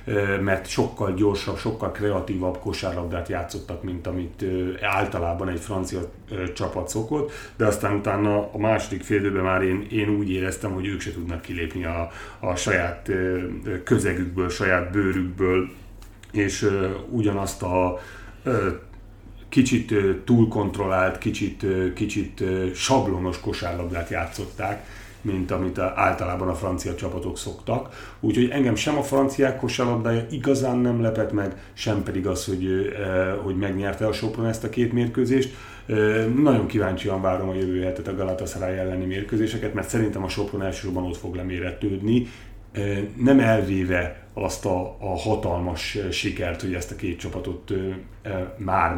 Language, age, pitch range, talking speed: Hungarian, 40-59, 95-110 Hz, 130 wpm